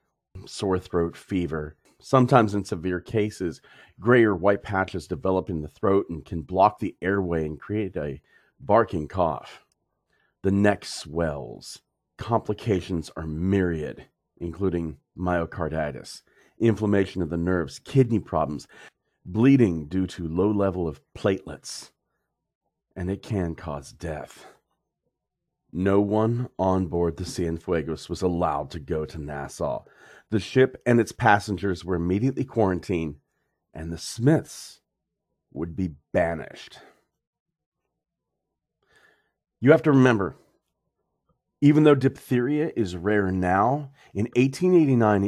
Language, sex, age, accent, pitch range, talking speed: English, male, 40-59, American, 85-120 Hz, 120 wpm